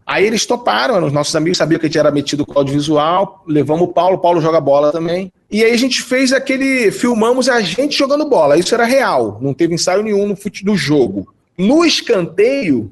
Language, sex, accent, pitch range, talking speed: Portuguese, male, Brazilian, 150-230 Hz, 220 wpm